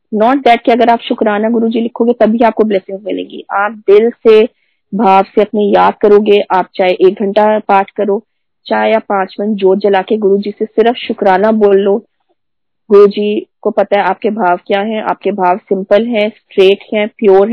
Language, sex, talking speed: Hindi, female, 185 wpm